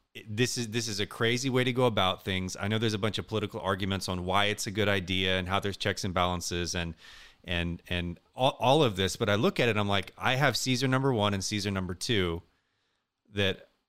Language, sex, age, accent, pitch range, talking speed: English, male, 30-49, American, 100-140 Hz, 240 wpm